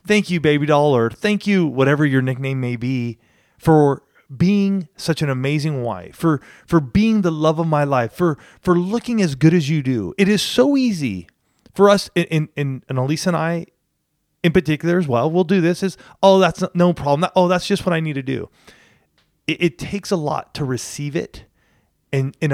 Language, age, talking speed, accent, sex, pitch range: English, 30-49, 205 wpm, American, male, 135-175 Hz